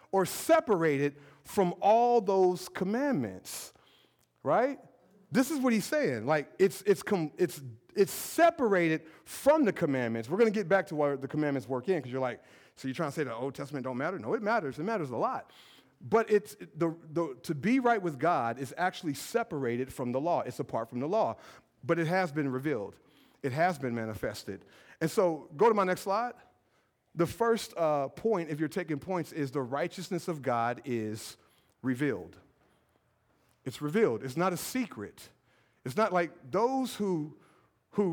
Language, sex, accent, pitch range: English, male, American, 150-205 Hz